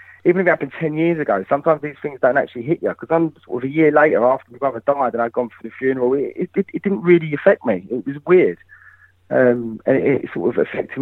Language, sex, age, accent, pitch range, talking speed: English, male, 20-39, British, 120-155 Hz, 260 wpm